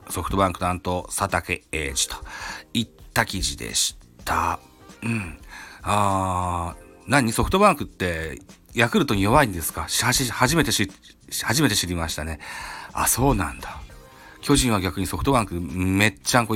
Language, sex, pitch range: Japanese, male, 85-125 Hz